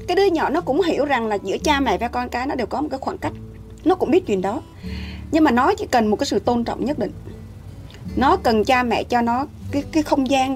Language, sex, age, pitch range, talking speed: Vietnamese, female, 20-39, 205-310 Hz, 275 wpm